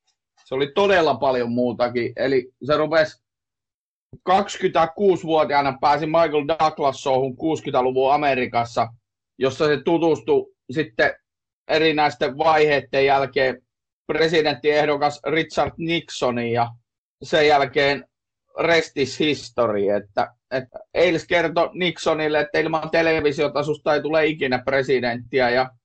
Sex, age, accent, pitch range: male, 30-49, native, 125-155 Hz